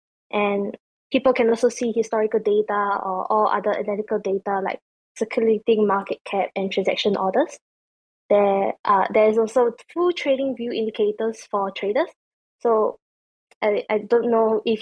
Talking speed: 140 wpm